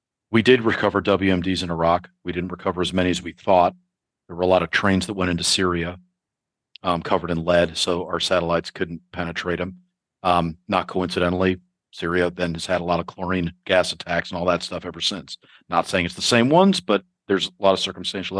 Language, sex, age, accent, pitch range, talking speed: English, male, 40-59, American, 85-100 Hz, 210 wpm